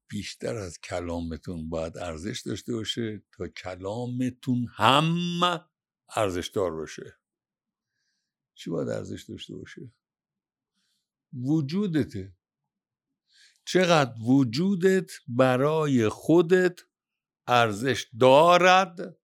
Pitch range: 120-180 Hz